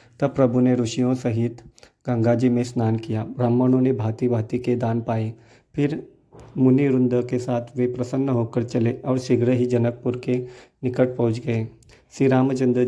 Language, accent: Hindi, native